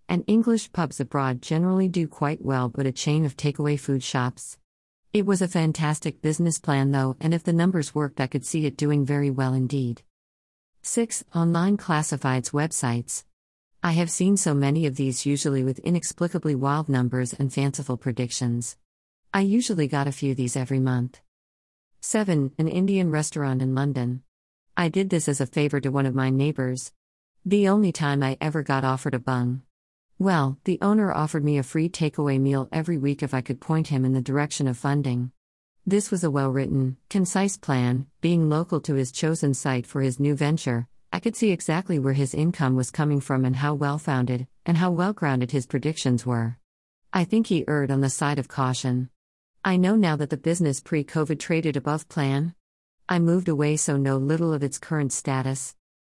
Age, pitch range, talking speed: 40-59, 130-165 Hz, 185 wpm